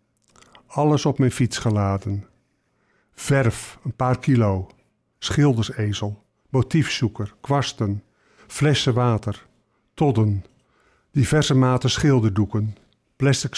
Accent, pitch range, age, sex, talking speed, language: Dutch, 110-140 Hz, 50-69, male, 85 wpm, Dutch